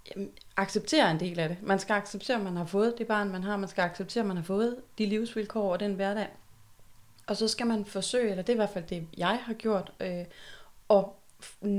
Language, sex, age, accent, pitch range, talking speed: Danish, female, 30-49, native, 185-220 Hz, 230 wpm